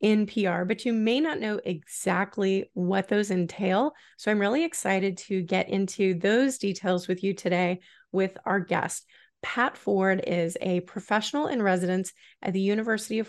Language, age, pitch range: English, 30-49, 180-220 Hz